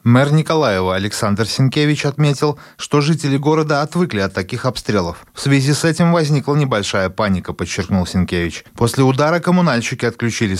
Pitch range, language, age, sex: 115-160 Hz, Russian, 20-39, male